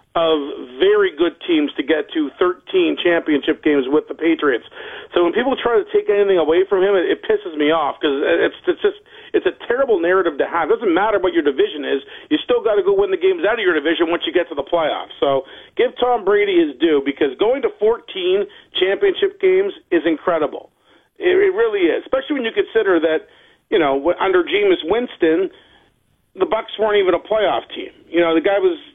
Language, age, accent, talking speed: English, 40-59, American, 215 wpm